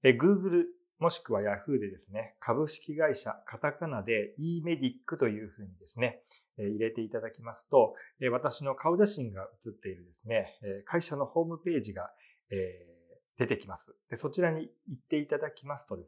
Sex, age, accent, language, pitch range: male, 40-59, native, Japanese, 105-165 Hz